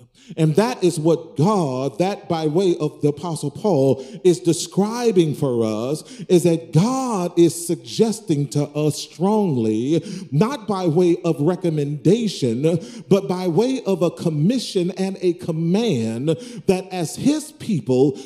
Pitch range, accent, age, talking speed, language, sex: 155-210 Hz, American, 40-59, 140 wpm, English, male